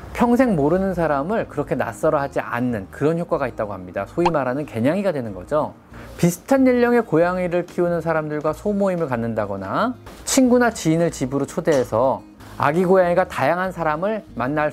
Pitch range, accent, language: 120-195 Hz, native, Korean